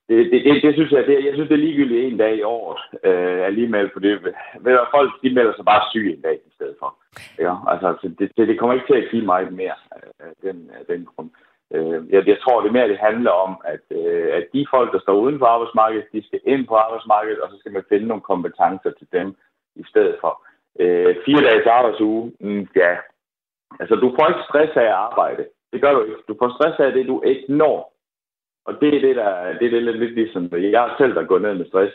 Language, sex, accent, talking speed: Danish, male, native, 235 wpm